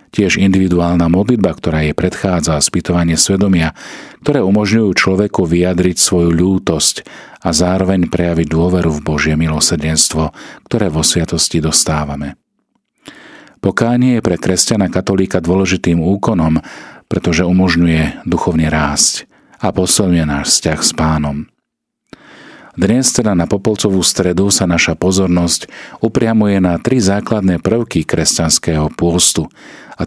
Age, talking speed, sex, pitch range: 40-59, 115 wpm, male, 80-100 Hz